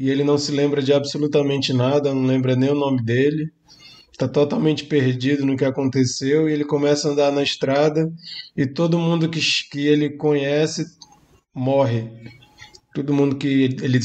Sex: male